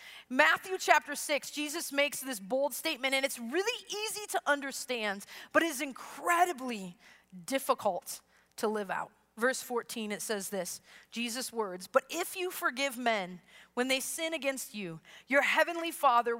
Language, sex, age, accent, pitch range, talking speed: English, female, 30-49, American, 205-280 Hz, 155 wpm